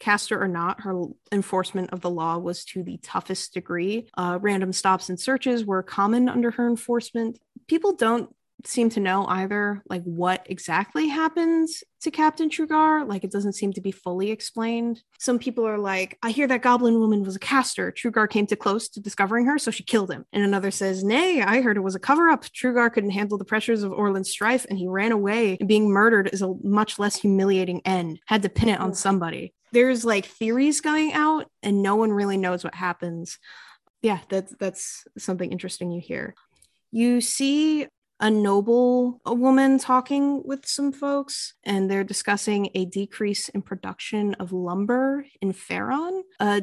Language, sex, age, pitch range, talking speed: English, female, 20-39, 190-240 Hz, 185 wpm